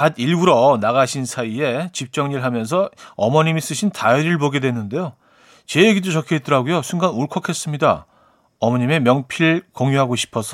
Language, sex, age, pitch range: Korean, male, 40-59, 125-180 Hz